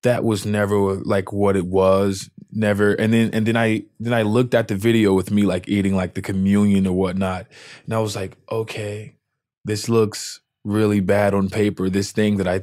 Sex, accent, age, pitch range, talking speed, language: male, American, 20-39, 100-115 Hz, 205 wpm, English